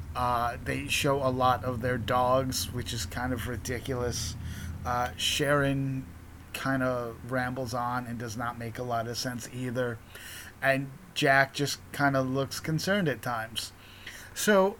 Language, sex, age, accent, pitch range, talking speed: English, male, 30-49, American, 120-140 Hz, 155 wpm